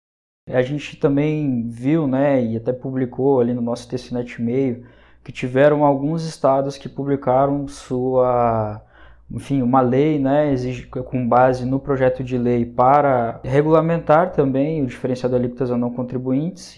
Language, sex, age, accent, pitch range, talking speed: Portuguese, male, 20-39, Brazilian, 120-140 Hz, 145 wpm